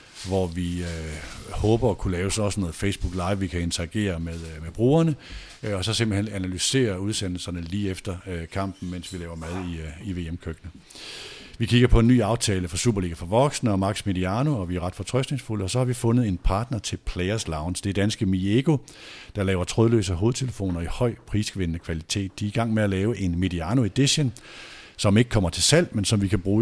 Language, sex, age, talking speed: Danish, male, 50-69, 215 wpm